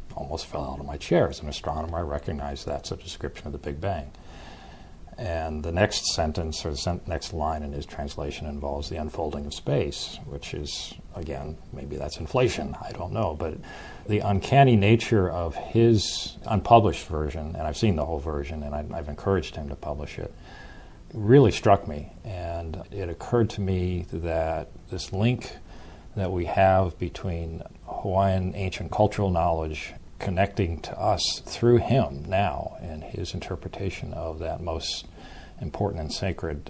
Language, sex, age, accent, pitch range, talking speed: English, male, 50-69, American, 80-105 Hz, 160 wpm